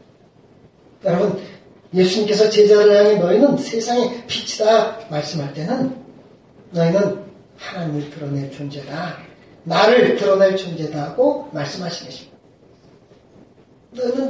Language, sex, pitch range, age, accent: Korean, male, 165-235 Hz, 40-59, native